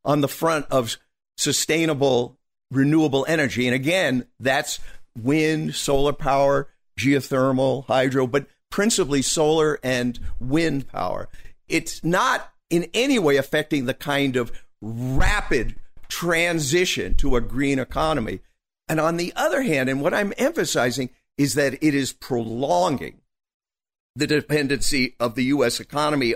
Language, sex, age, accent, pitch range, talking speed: English, male, 50-69, American, 125-155 Hz, 125 wpm